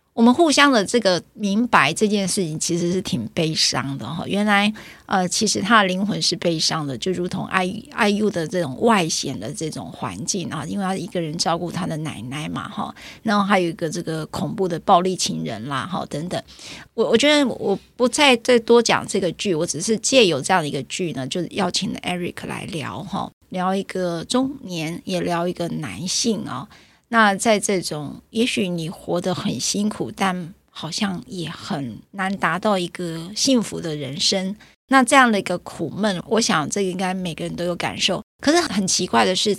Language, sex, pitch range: Chinese, female, 170-215 Hz